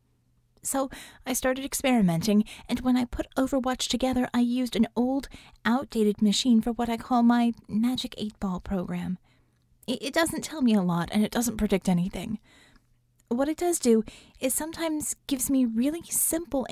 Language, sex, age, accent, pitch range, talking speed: English, female, 30-49, American, 205-255 Hz, 160 wpm